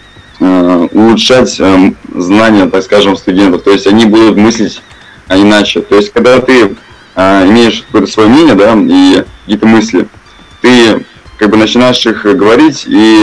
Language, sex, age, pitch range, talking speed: Russian, male, 20-39, 100-115 Hz, 135 wpm